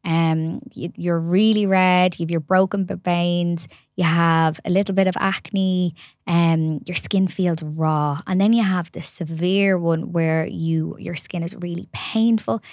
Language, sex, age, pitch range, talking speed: English, female, 20-39, 165-190 Hz, 170 wpm